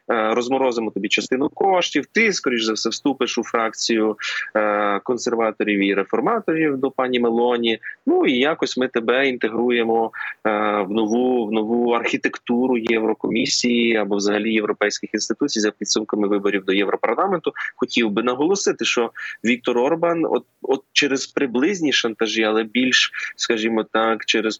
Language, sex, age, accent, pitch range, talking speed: Ukrainian, male, 20-39, native, 110-135 Hz, 130 wpm